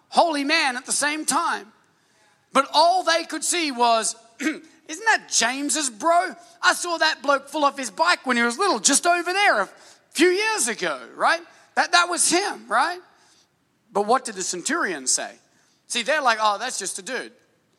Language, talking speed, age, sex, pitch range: English, 185 wpm, 30-49, male, 250-330 Hz